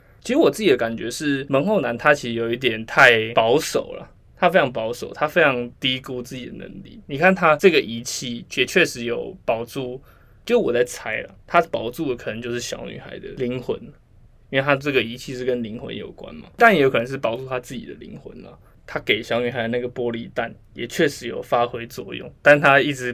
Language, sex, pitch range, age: Chinese, male, 120-140 Hz, 20-39